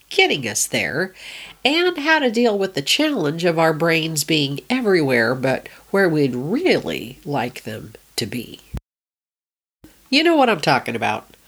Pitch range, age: 135-195 Hz, 50-69